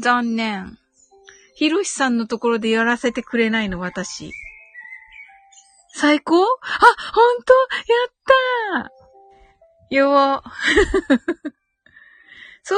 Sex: female